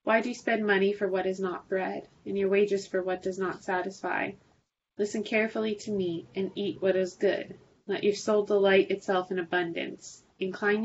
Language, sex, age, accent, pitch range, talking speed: English, female, 20-39, American, 180-200 Hz, 195 wpm